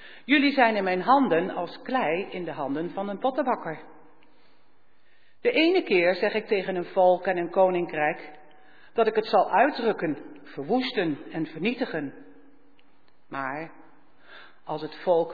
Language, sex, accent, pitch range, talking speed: Dutch, female, Dutch, 155-255 Hz, 140 wpm